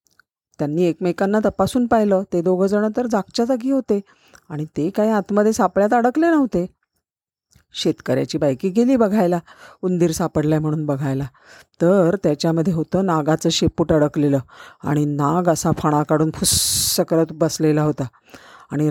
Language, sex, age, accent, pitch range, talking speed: Marathi, female, 40-59, native, 165-200 Hz, 135 wpm